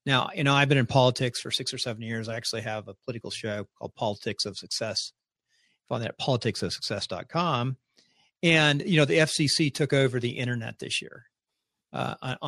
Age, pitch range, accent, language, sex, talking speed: 50-69, 115-140 Hz, American, English, male, 185 wpm